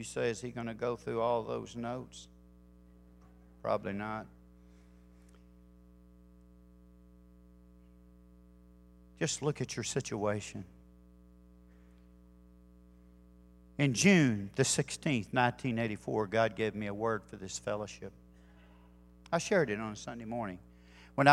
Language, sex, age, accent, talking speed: English, male, 50-69, American, 110 wpm